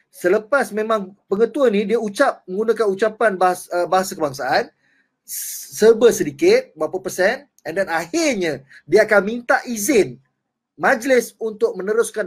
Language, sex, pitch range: Malay, male, 200-275 Hz